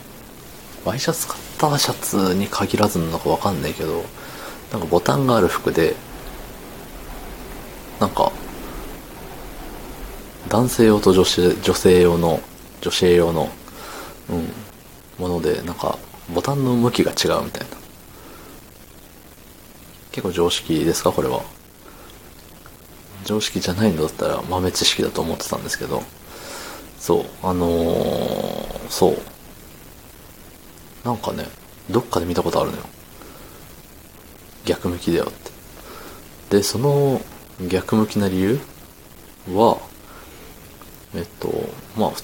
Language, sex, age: Japanese, male, 40-59